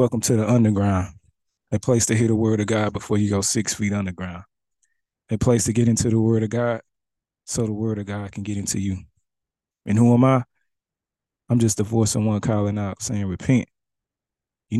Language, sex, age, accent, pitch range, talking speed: English, male, 20-39, American, 105-130 Hz, 205 wpm